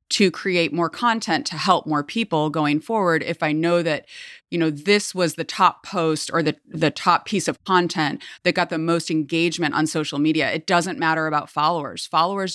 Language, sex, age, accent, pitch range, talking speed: English, female, 30-49, American, 155-205 Hz, 200 wpm